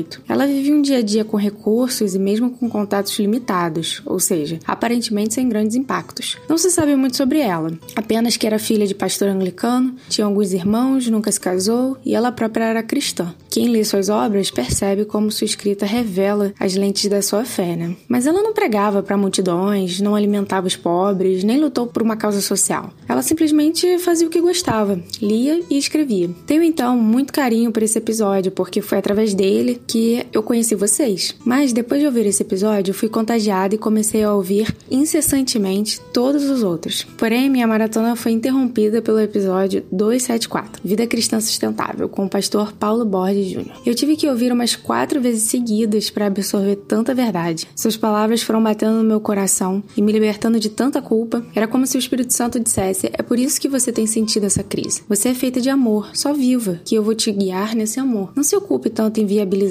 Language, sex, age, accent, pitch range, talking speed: Portuguese, female, 10-29, Brazilian, 200-245 Hz, 195 wpm